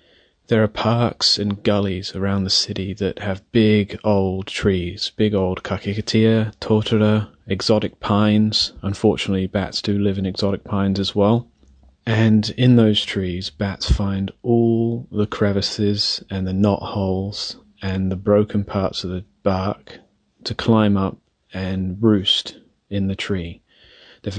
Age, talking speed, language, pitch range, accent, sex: 30-49, 140 wpm, English, 100-110 Hz, British, male